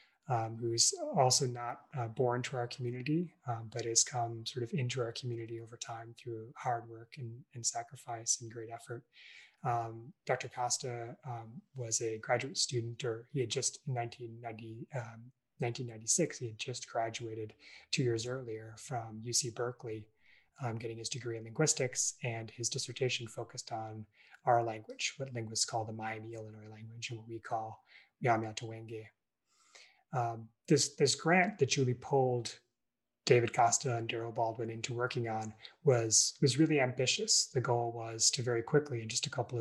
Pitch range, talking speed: 115-130 Hz, 160 wpm